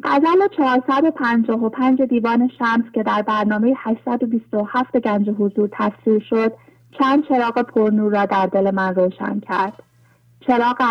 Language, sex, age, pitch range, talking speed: English, female, 30-49, 195-235 Hz, 125 wpm